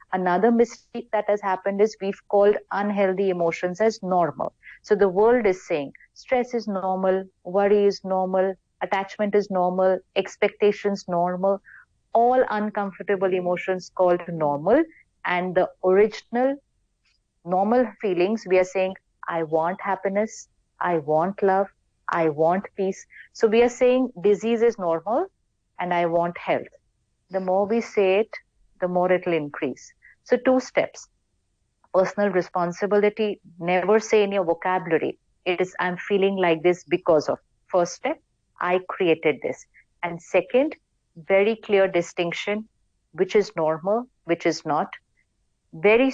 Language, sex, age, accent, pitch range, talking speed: English, female, 50-69, Indian, 175-210 Hz, 135 wpm